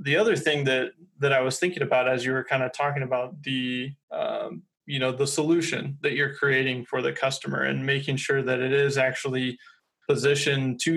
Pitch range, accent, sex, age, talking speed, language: 130-145 Hz, American, male, 20-39, 200 wpm, English